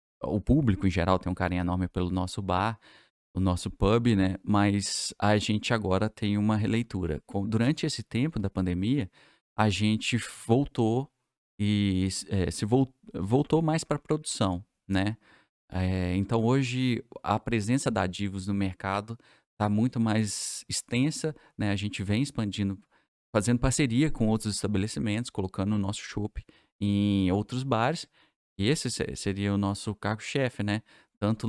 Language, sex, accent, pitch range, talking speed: Portuguese, male, Brazilian, 95-120 Hz, 150 wpm